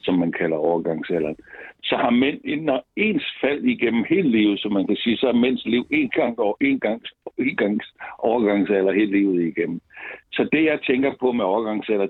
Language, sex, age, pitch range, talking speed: Danish, male, 60-79, 100-120 Hz, 195 wpm